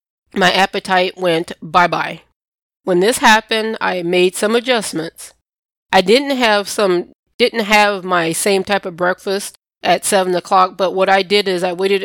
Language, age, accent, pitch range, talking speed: English, 20-39, American, 180-205 Hz, 165 wpm